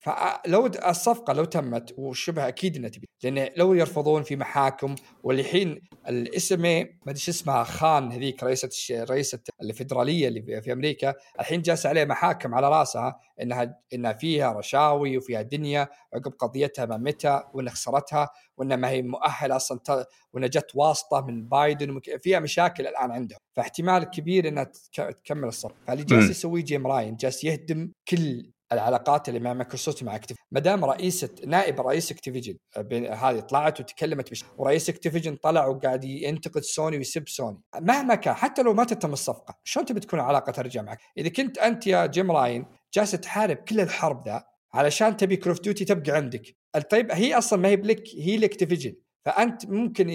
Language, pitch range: Arabic, 130-185 Hz